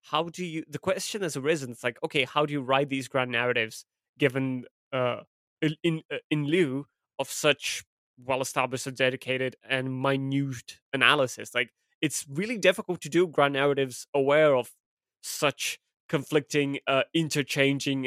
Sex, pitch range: male, 125-150 Hz